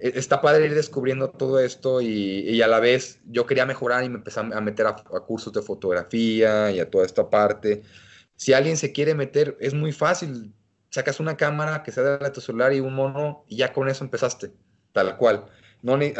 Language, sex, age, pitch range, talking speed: Spanish, male, 30-49, 120-145 Hz, 205 wpm